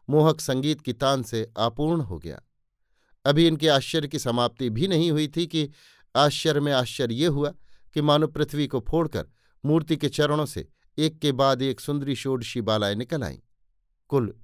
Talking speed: 175 wpm